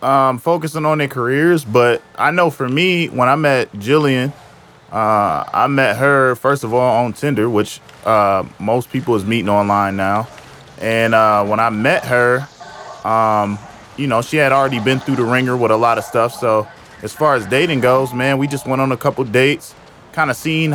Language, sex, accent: English, male, American